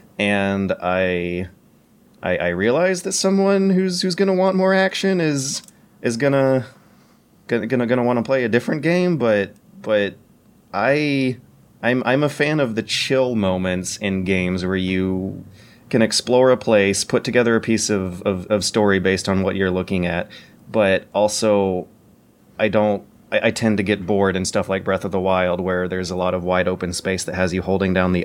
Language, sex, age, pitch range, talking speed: English, male, 30-49, 95-130 Hz, 185 wpm